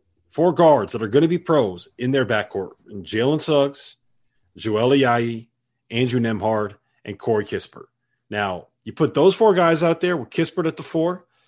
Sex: male